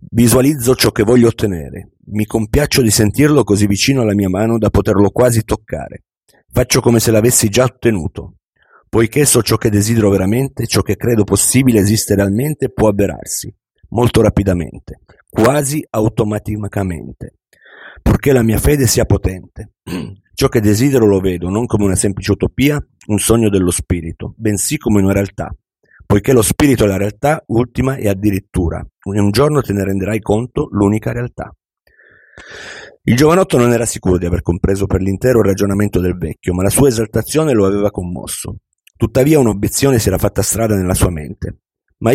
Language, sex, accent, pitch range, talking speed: Italian, male, native, 95-120 Hz, 165 wpm